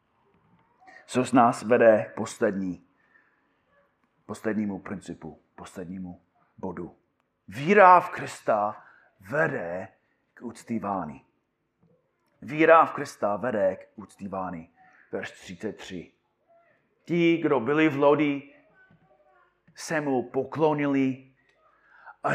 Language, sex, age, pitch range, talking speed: Czech, male, 40-59, 130-200 Hz, 85 wpm